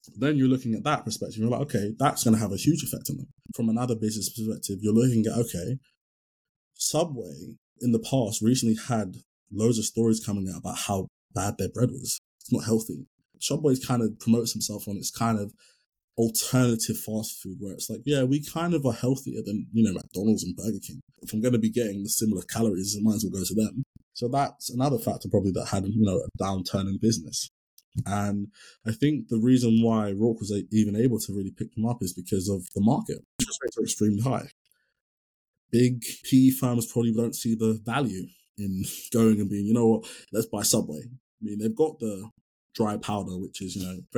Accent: British